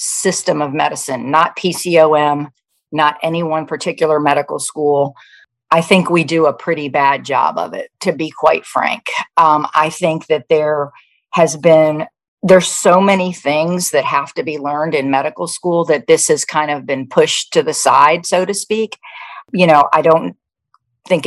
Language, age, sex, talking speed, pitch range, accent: English, 50-69, female, 175 wpm, 150-185 Hz, American